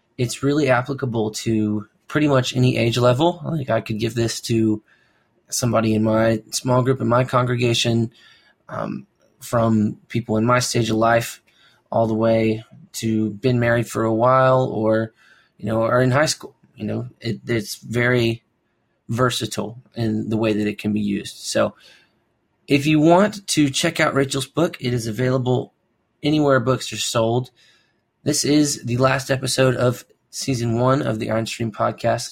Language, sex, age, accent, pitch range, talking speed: English, male, 20-39, American, 110-130 Hz, 170 wpm